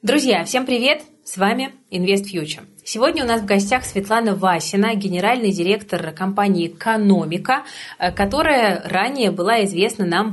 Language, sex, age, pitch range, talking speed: Russian, female, 30-49, 180-220 Hz, 135 wpm